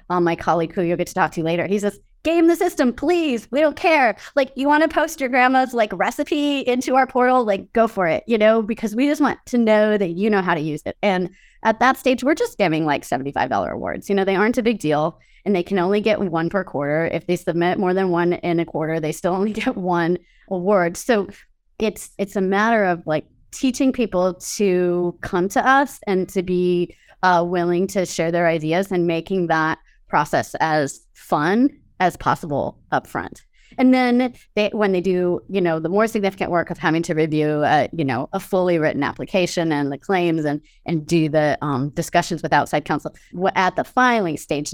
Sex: female